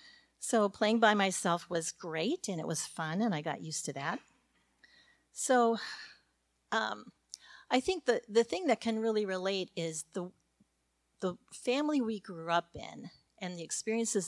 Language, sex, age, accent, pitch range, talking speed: English, female, 40-59, American, 150-210 Hz, 160 wpm